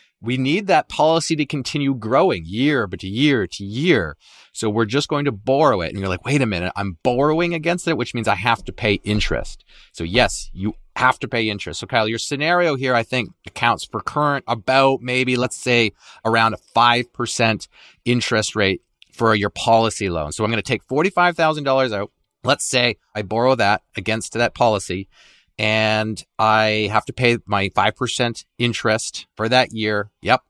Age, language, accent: 30-49, English, American